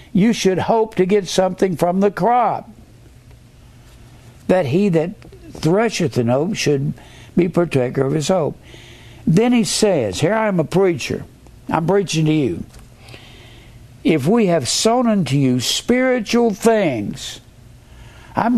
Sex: male